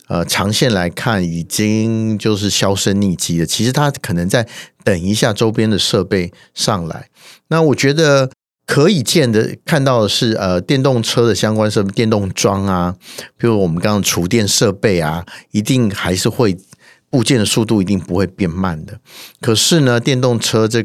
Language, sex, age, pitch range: Chinese, male, 50-69, 95-125 Hz